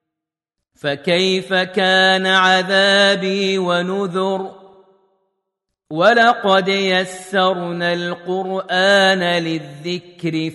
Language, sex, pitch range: Arabic, male, 165-190 Hz